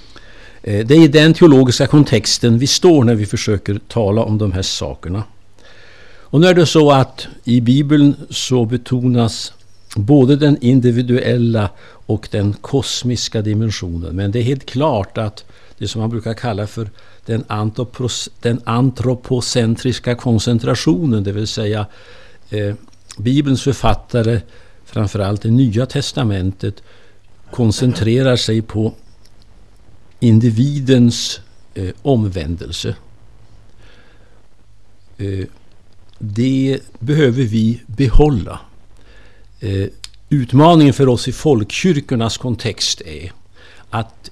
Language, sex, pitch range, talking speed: Danish, male, 100-125 Hz, 100 wpm